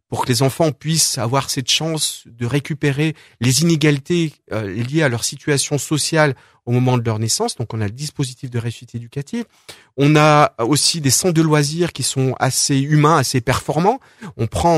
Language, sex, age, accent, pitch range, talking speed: French, male, 40-59, French, 130-170 Hz, 185 wpm